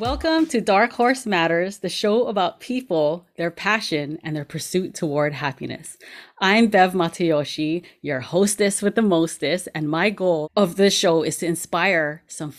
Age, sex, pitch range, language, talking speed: 30-49, female, 155-205 Hz, English, 160 wpm